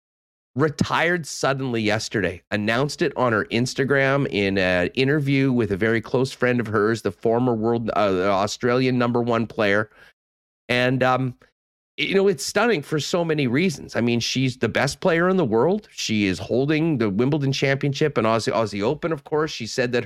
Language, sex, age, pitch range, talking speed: English, male, 40-59, 110-145 Hz, 175 wpm